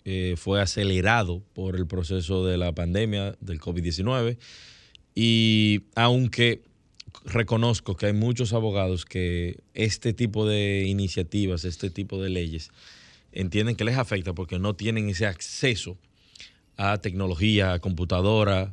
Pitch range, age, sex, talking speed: 95-110 Hz, 30-49, male, 130 wpm